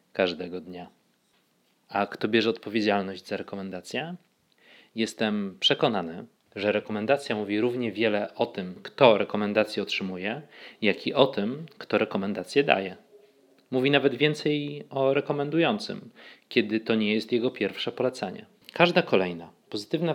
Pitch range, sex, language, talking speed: 105-135 Hz, male, Polish, 125 wpm